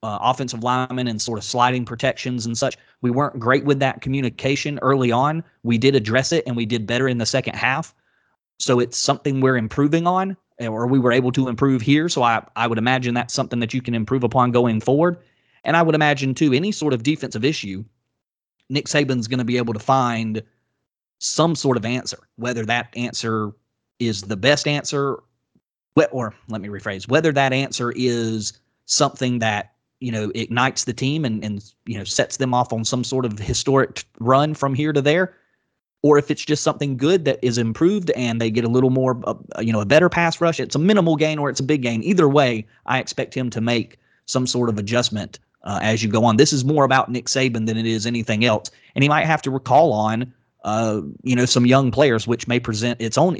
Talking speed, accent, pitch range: 220 wpm, American, 115-135 Hz